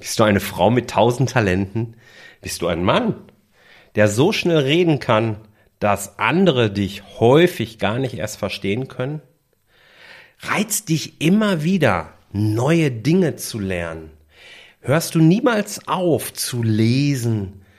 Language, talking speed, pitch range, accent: German, 130 wpm, 100-165 Hz, German